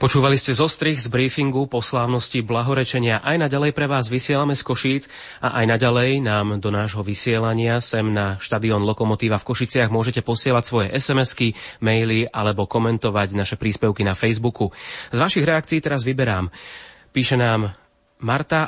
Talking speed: 150 wpm